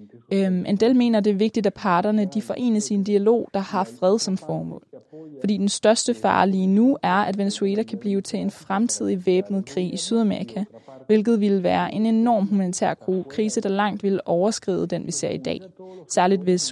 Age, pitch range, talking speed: 20-39, 180-215 Hz, 195 wpm